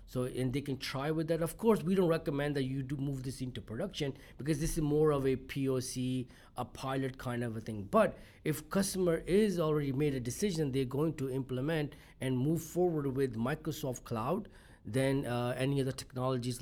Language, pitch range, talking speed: English, 125-165 Hz, 200 wpm